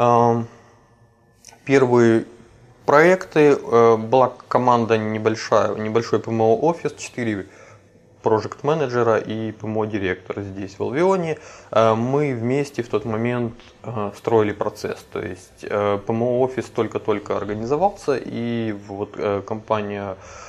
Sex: male